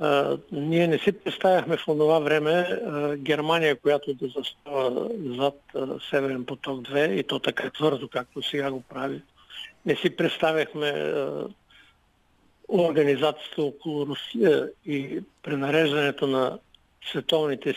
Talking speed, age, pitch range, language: 125 wpm, 60-79, 150-180 Hz, Bulgarian